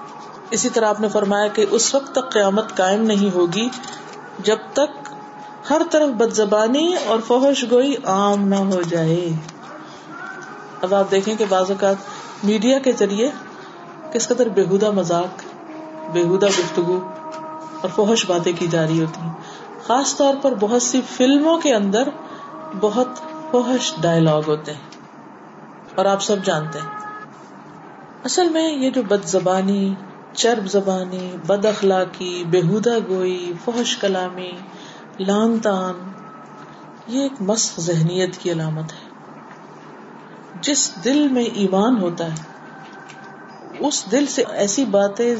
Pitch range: 185-260 Hz